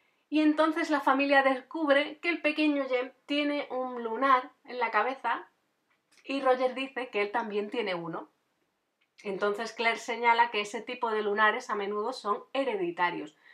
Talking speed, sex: 155 wpm, female